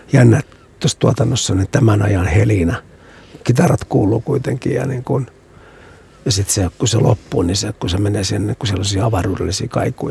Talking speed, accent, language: 180 wpm, native, Finnish